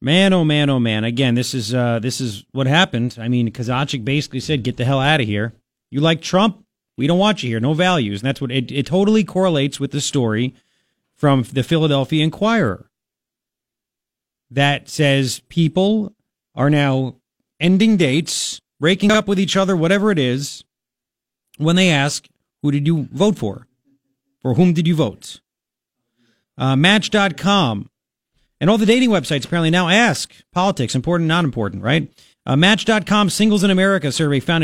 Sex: male